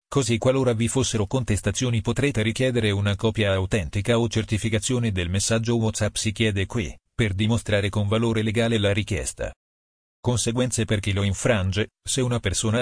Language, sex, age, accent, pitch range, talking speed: Italian, male, 40-59, native, 100-120 Hz, 155 wpm